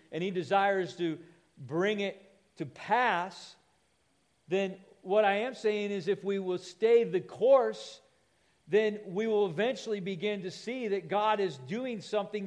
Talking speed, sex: 155 wpm, male